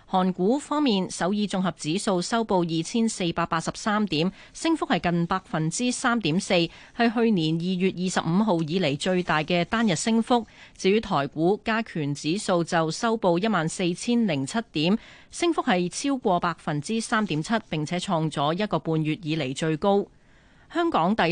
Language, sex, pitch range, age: Chinese, female, 165-225 Hz, 30-49